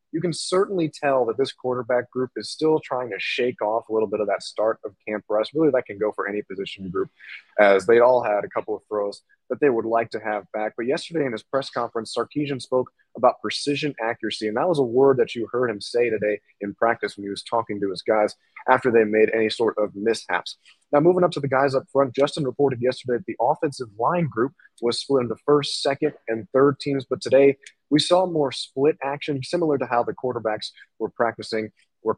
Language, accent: English, American